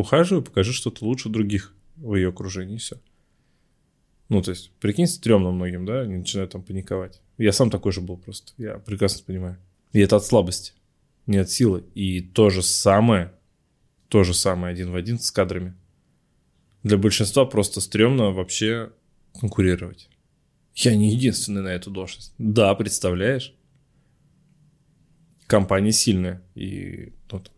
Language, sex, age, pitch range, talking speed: Russian, male, 20-39, 95-120 Hz, 145 wpm